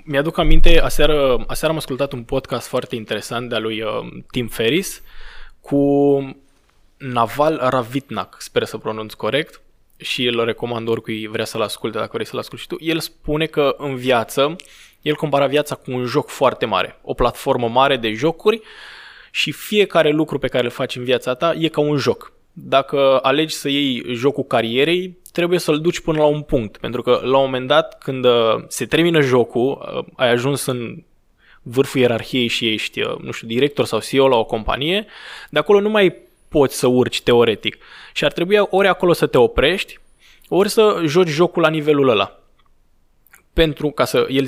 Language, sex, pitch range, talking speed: Romanian, male, 125-155 Hz, 175 wpm